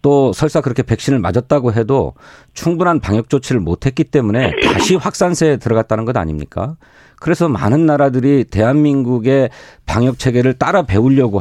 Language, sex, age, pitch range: Korean, male, 40-59, 110-155 Hz